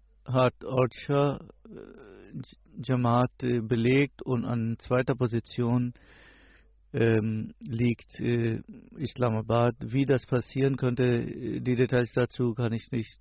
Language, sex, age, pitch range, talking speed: German, male, 50-69, 115-130 Hz, 110 wpm